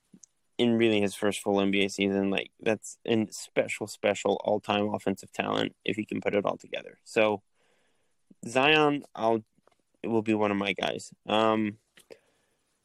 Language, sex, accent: English, male, American